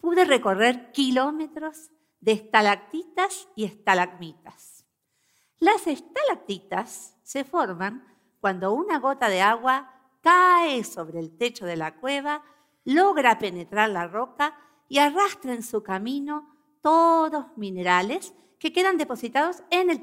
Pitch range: 200-305 Hz